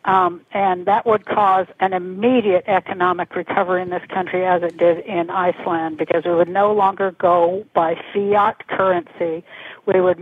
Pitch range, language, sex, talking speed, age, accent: 175-205 Hz, English, female, 165 wpm, 60-79, American